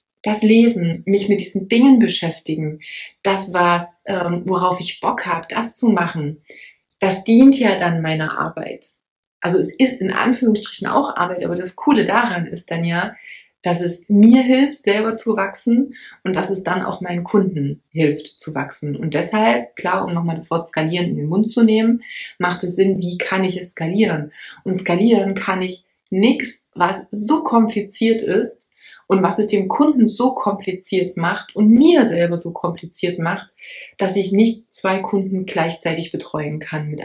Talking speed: 175 wpm